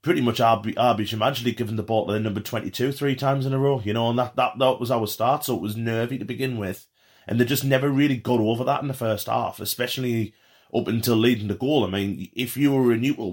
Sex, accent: male, British